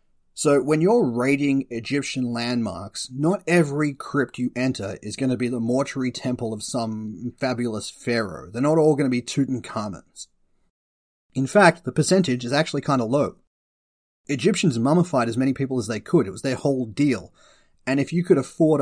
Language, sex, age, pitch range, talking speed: English, male, 30-49, 125-160 Hz, 180 wpm